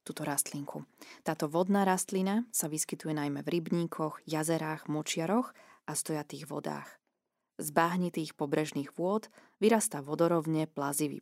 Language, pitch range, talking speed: Slovak, 155-200 Hz, 120 wpm